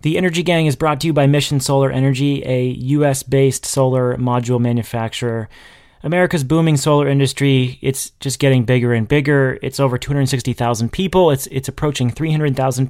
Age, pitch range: 30-49, 130-150 Hz